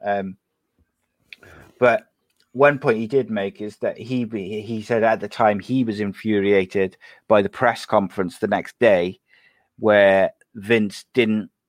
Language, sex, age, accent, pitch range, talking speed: English, male, 30-49, British, 95-110 Hz, 145 wpm